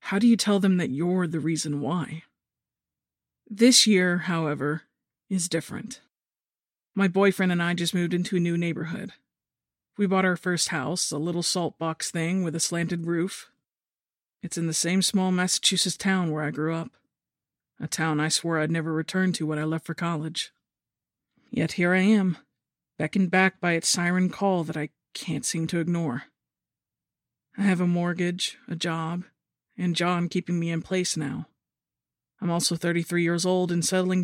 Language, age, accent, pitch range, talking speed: English, 40-59, American, 160-185 Hz, 175 wpm